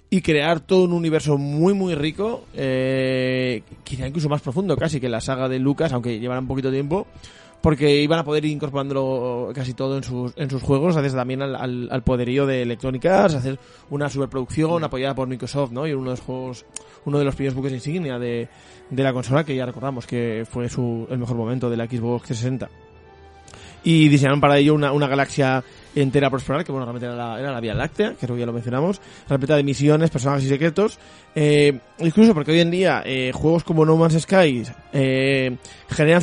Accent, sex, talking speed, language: Spanish, male, 205 wpm, Spanish